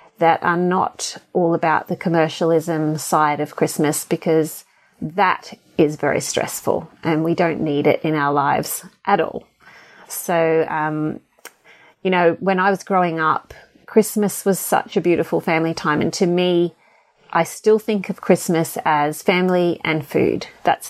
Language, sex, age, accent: English, female, 30-49, Australian